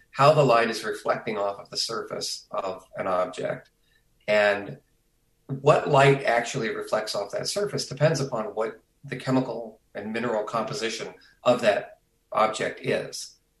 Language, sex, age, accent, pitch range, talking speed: English, male, 40-59, American, 110-140 Hz, 140 wpm